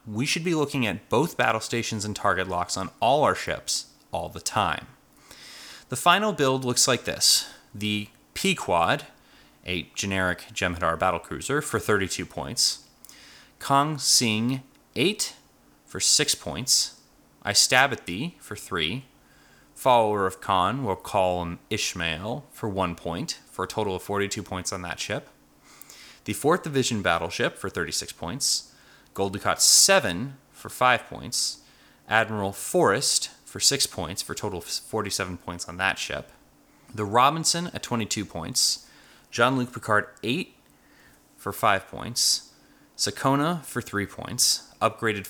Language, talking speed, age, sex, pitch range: English, 140 wpm, 30-49, male, 95-135 Hz